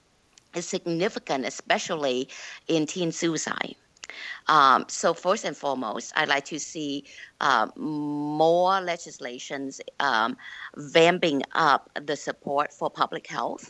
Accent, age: American, 50-69